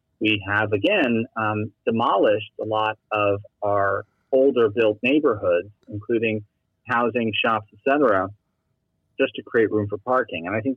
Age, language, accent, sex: 30-49, English, American, male